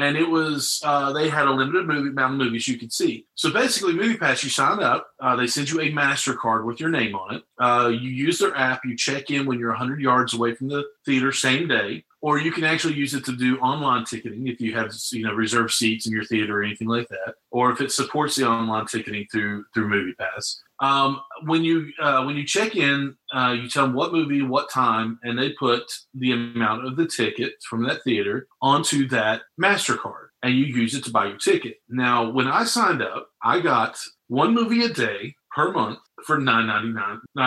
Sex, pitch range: male, 120-145 Hz